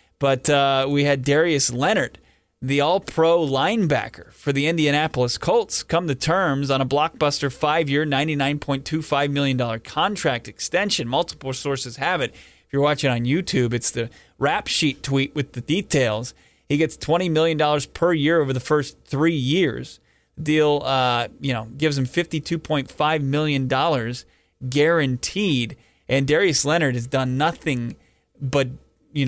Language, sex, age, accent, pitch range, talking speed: English, male, 30-49, American, 130-160 Hz, 140 wpm